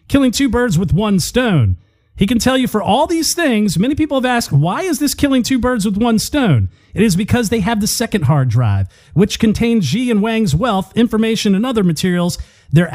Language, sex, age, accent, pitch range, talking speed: English, male, 40-59, American, 160-235 Hz, 220 wpm